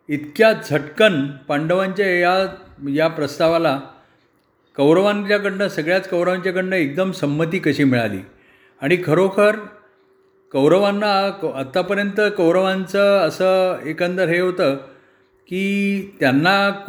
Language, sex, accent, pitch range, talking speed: Marathi, male, native, 150-195 Hz, 75 wpm